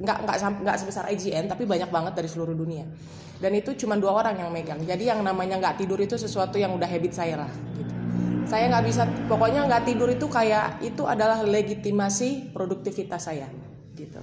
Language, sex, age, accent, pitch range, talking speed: Indonesian, female, 20-39, native, 170-215 Hz, 190 wpm